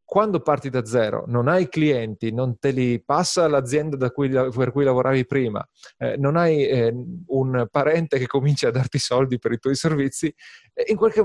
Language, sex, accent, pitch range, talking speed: Italian, male, native, 120-155 Hz, 175 wpm